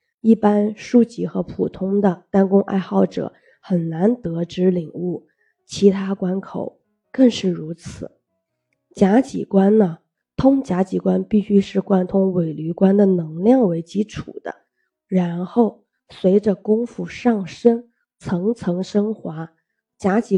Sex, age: female, 20-39